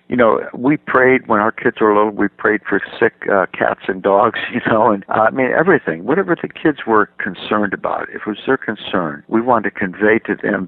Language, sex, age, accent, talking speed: English, male, 60-79, American, 230 wpm